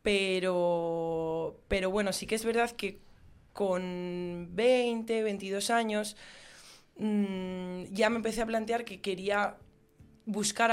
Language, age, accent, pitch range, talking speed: Spanish, 20-39, Spanish, 175-215 Hz, 115 wpm